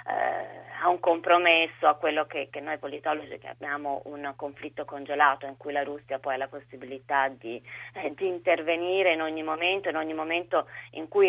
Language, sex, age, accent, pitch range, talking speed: Italian, female, 30-49, native, 145-185 Hz, 175 wpm